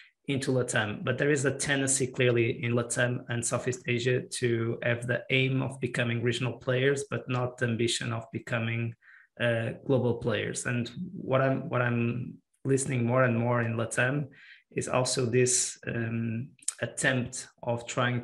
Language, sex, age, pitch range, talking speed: English, male, 20-39, 120-130 Hz, 160 wpm